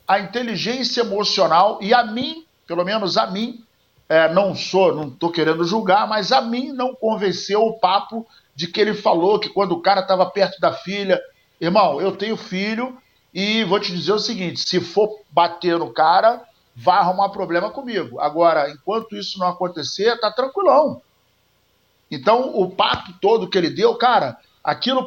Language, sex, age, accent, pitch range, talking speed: Portuguese, male, 50-69, Brazilian, 185-255 Hz, 170 wpm